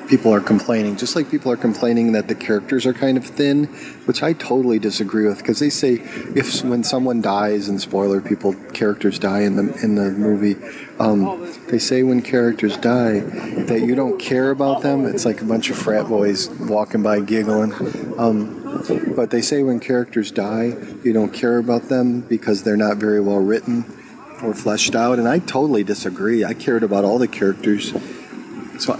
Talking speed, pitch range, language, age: 190 wpm, 105-125 Hz, English, 40-59